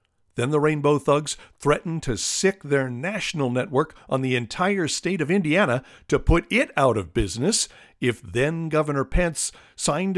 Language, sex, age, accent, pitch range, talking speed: English, male, 50-69, American, 125-180 Hz, 155 wpm